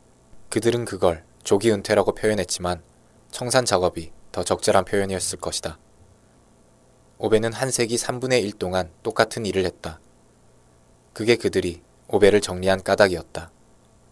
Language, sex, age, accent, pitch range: Korean, male, 20-39, native, 90-110 Hz